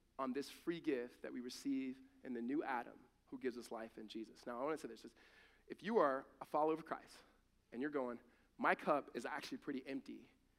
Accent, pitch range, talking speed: American, 115-155 Hz, 220 wpm